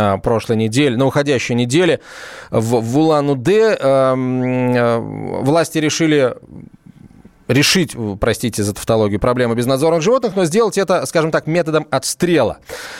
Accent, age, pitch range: native, 20-39, 120-160 Hz